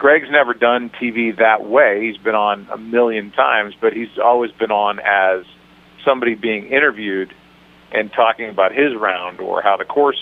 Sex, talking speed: male, 175 wpm